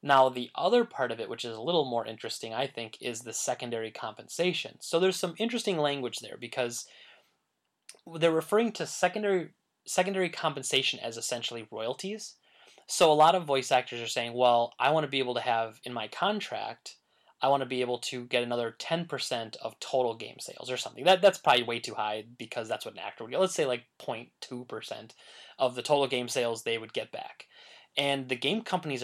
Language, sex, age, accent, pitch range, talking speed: English, male, 20-39, American, 120-160 Hz, 205 wpm